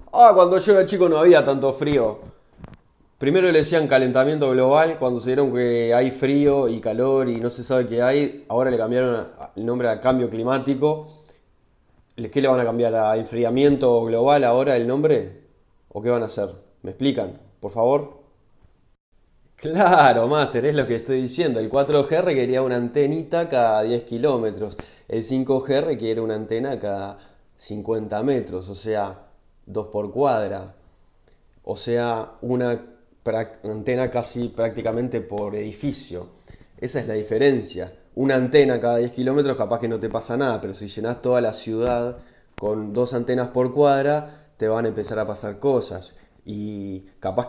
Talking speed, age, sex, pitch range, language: 165 wpm, 20-39, male, 110-135 Hz, Spanish